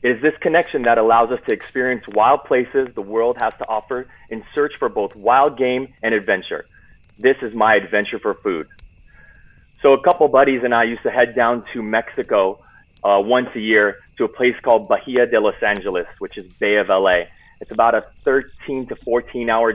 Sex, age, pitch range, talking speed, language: male, 30-49, 115-140 Hz, 205 wpm, English